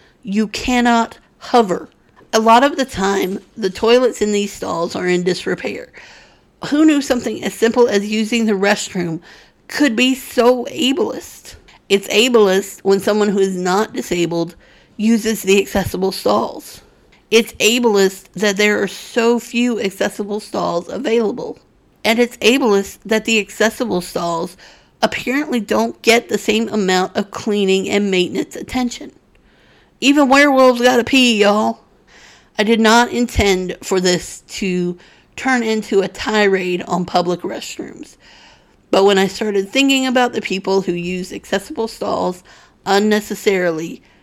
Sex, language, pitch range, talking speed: female, English, 185-230 Hz, 135 wpm